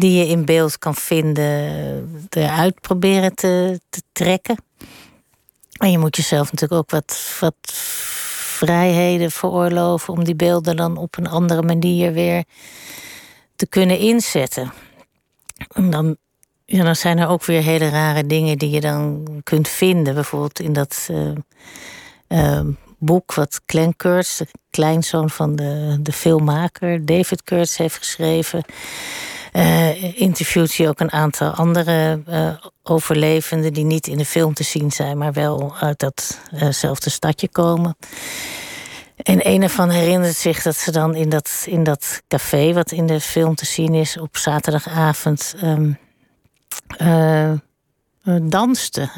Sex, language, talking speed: female, Dutch, 140 wpm